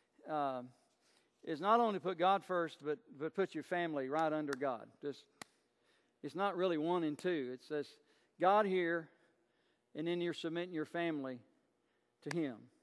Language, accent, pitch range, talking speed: English, American, 150-200 Hz, 160 wpm